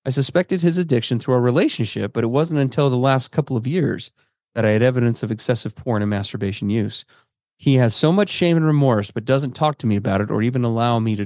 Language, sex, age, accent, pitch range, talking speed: English, male, 30-49, American, 115-150 Hz, 240 wpm